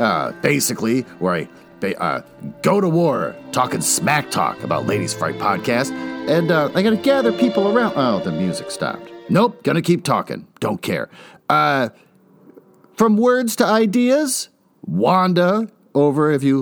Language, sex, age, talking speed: English, male, 40-59, 150 wpm